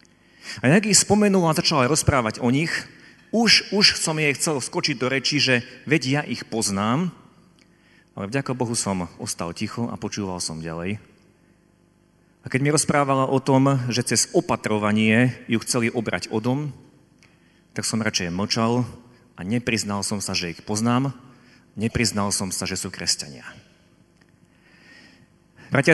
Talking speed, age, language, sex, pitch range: 145 wpm, 40-59, Slovak, male, 110-140 Hz